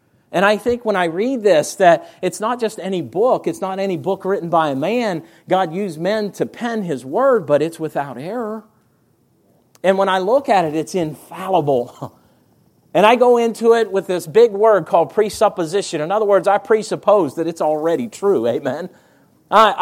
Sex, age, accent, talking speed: male, 40-59, American, 190 wpm